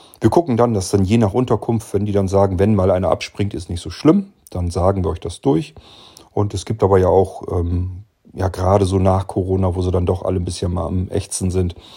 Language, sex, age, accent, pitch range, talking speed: German, male, 40-59, German, 95-115 Hz, 245 wpm